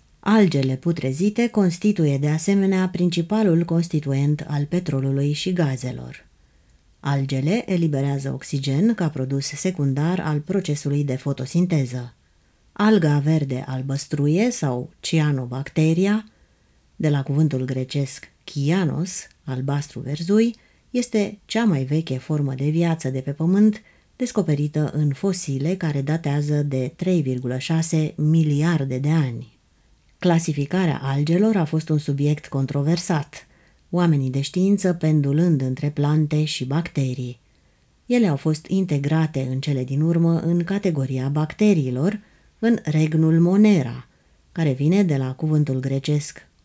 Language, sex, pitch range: Romanian, female, 135-180 Hz